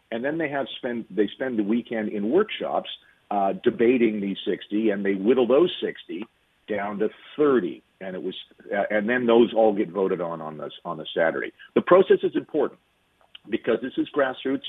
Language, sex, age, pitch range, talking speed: English, male, 50-69, 100-125 Hz, 190 wpm